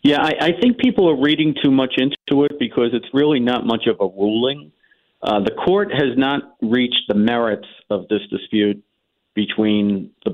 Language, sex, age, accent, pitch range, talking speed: English, male, 50-69, American, 105-130 Hz, 185 wpm